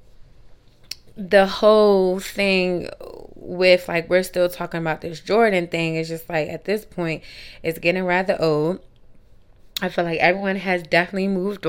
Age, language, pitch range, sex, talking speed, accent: 20-39, English, 165-190 Hz, female, 150 wpm, American